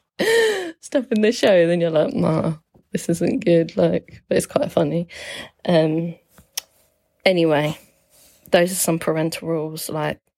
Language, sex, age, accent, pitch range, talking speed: English, female, 20-39, British, 160-195 Hz, 145 wpm